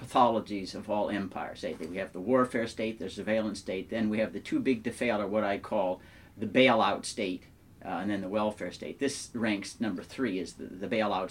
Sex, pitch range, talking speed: male, 105-145 Hz, 230 wpm